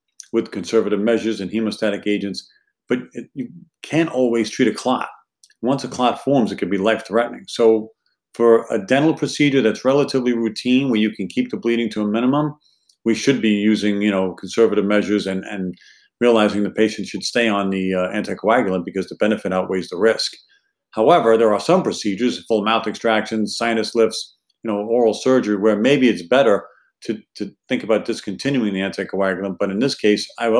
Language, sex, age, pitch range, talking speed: English, male, 50-69, 105-120 Hz, 185 wpm